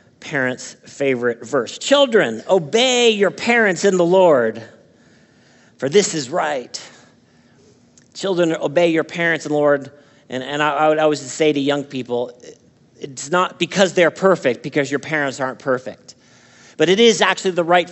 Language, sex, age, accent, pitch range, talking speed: English, male, 50-69, American, 145-185 Hz, 155 wpm